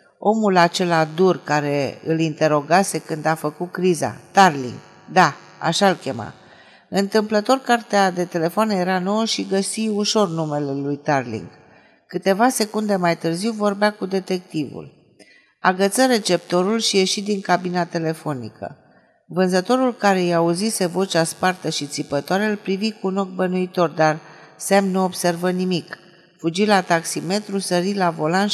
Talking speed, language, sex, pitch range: 135 wpm, Romanian, female, 160-200 Hz